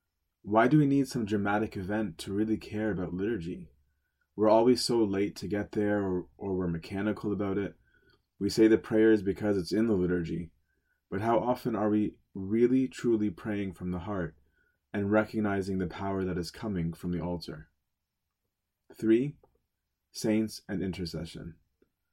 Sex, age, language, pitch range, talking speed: male, 20-39, English, 90-110 Hz, 160 wpm